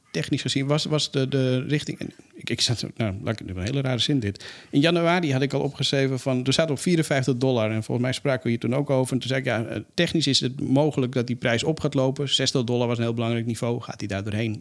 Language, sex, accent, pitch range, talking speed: Dutch, male, Dutch, 120-145 Hz, 265 wpm